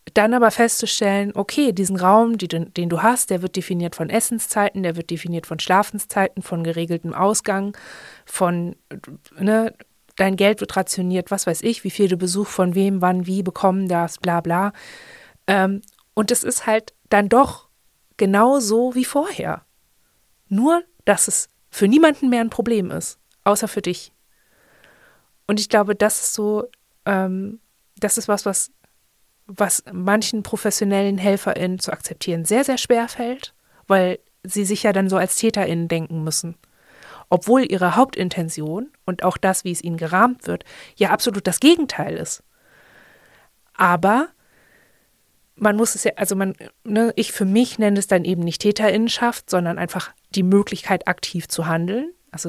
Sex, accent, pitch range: female, German, 180-225 Hz